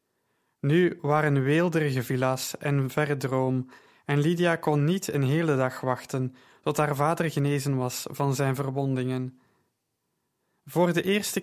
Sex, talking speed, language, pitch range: male, 135 wpm, Dutch, 135-155 Hz